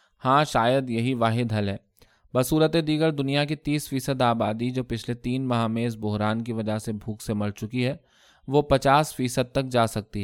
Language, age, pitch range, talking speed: Urdu, 20-39, 110-135 Hz, 200 wpm